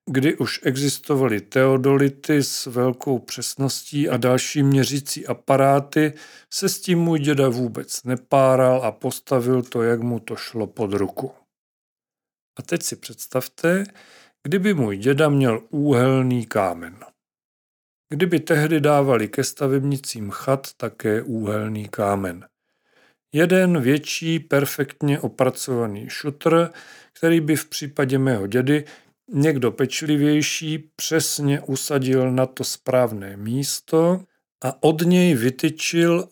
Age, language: 40-59, Czech